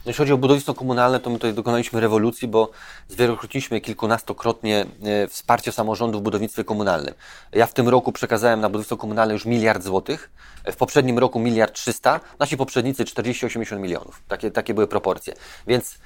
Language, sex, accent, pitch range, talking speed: Polish, male, native, 105-125 Hz, 165 wpm